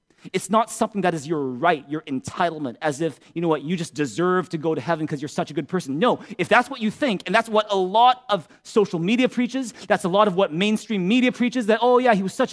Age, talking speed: 30-49, 270 wpm